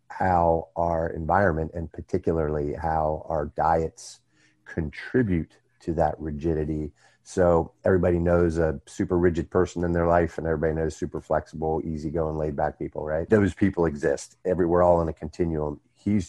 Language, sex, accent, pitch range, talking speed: English, male, American, 80-90 Hz, 150 wpm